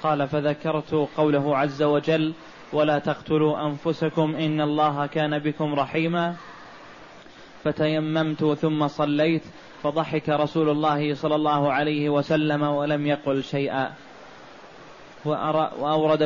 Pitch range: 150-160 Hz